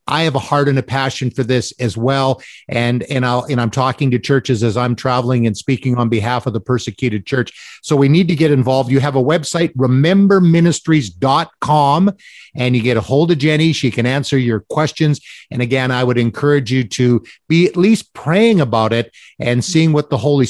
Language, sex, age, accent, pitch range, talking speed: English, male, 50-69, American, 125-150 Hz, 205 wpm